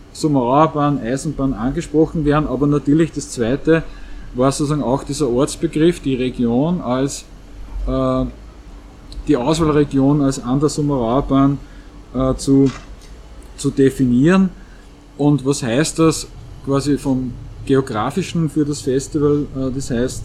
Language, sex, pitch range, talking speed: German, male, 130-155 Hz, 115 wpm